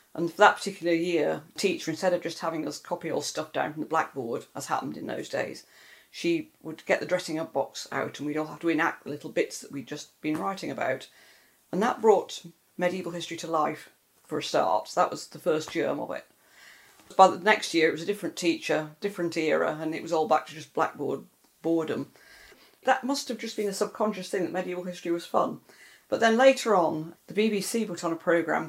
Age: 40-59